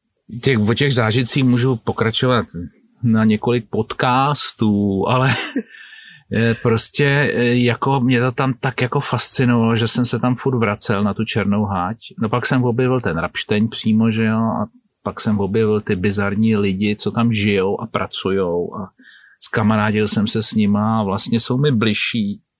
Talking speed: 160 wpm